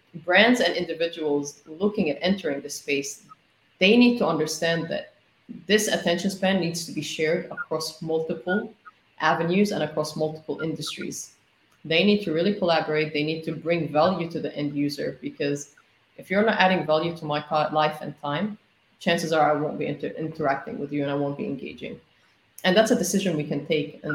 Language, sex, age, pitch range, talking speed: English, female, 30-49, 150-190 Hz, 185 wpm